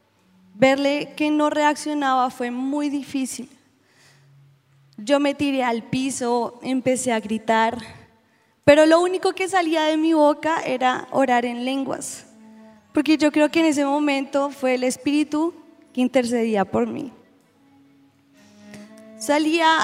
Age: 10-29